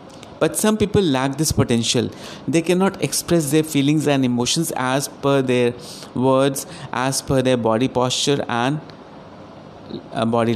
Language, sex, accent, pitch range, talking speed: Hindi, male, native, 125-160 Hz, 135 wpm